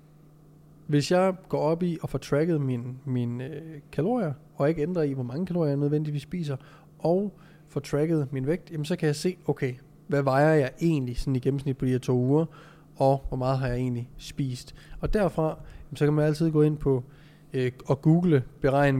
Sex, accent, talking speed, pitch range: male, native, 210 wpm, 130-155 Hz